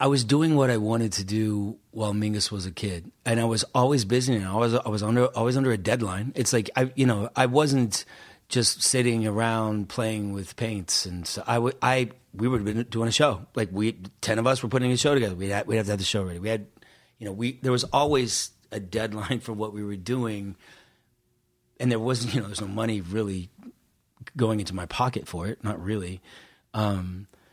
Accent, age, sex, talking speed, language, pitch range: American, 30-49, male, 230 wpm, English, 105-125 Hz